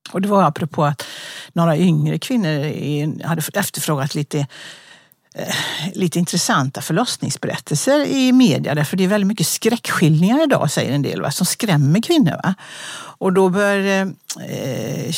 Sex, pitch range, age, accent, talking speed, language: female, 150-185 Hz, 60-79, native, 145 wpm, Swedish